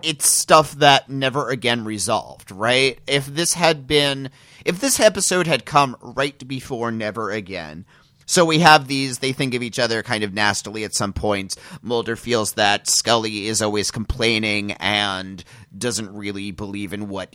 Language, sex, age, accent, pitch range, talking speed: English, male, 30-49, American, 105-140 Hz, 165 wpm